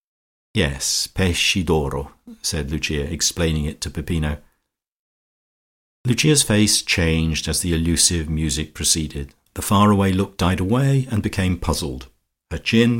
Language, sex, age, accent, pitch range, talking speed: English, male, 50-69, British, 80-115 Hz, 125 wpm